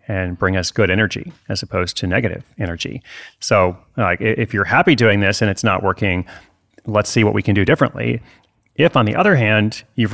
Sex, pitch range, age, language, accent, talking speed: male, 105-125 Hz, 30-49, English, American, 200 wpm